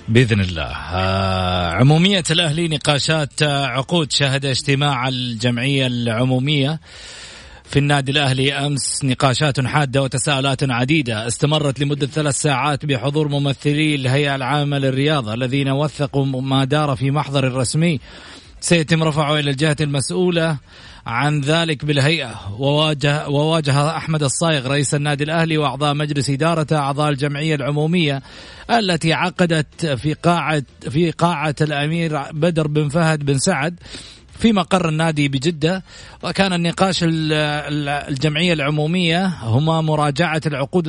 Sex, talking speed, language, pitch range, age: male, 115 wpm, Arabic, 140-165 Hz, 30-49